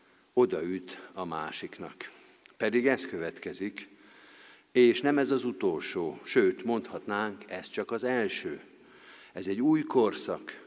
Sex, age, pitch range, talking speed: male, 50-69, 105-140 Hz, 120 wpm